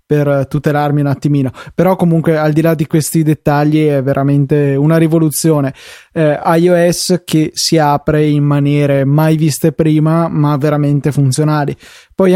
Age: 20-39